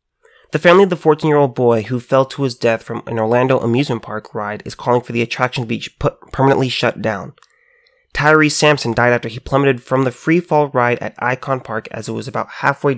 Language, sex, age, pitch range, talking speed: English, male, 20-39, 115-145 Hz, 215 wpm